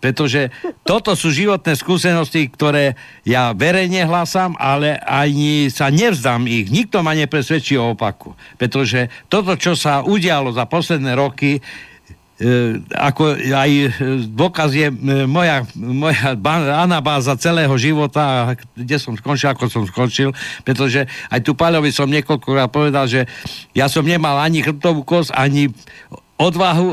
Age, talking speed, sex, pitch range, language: 60-79, 130 wpm, male, 130-160 Hz, Slovak